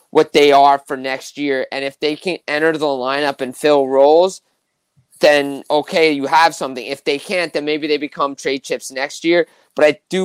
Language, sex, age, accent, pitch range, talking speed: English, male, 20-39, American, 140-170 Hz, 205 wpm